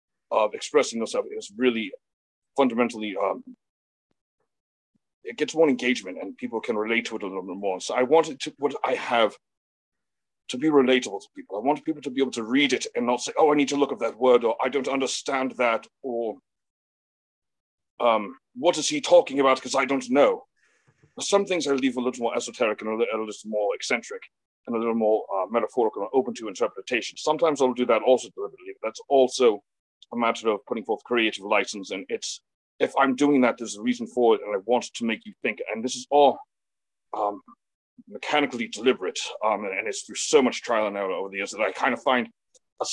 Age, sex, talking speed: 30-49, male, 215 wpm